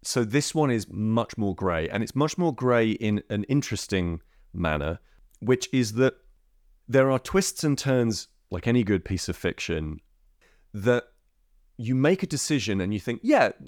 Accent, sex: British, male